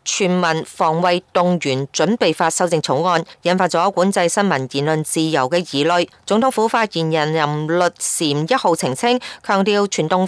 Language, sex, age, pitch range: Chinese, female, 30-49, 170-220 Hz